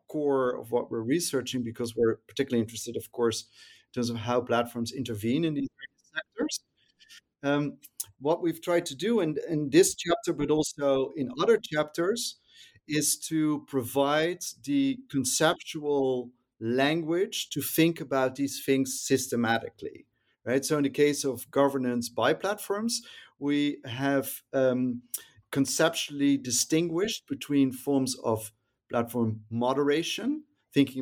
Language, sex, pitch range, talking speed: English, male, 125-150 Hz, 130 wpm